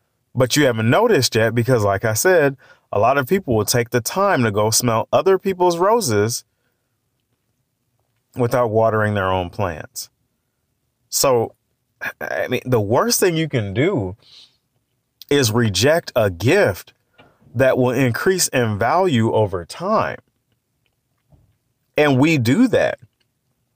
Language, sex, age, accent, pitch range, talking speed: English, male, 30-49, American, 110-130 Hz, 130 wpm